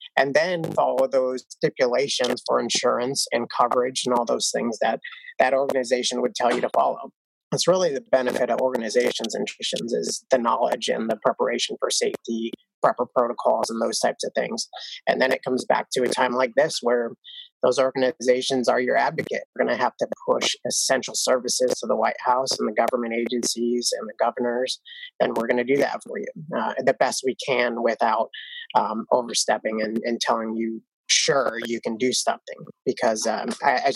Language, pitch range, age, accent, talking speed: English, 120-175 Hz, 30-49, American, 195 wpm